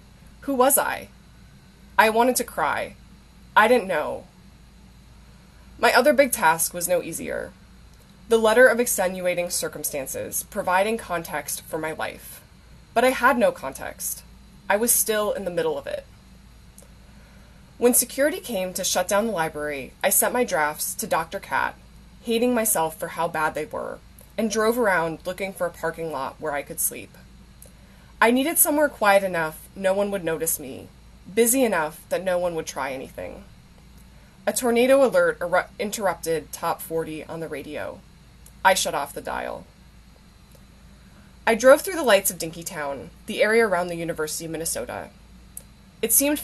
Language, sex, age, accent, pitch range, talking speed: English, female, 20-39, American, 165-240 Hz, 160 wpm